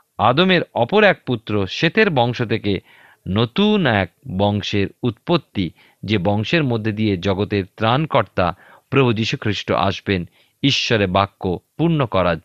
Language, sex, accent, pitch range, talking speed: Bengali, male, native, 100-145 Hz, 115 wpm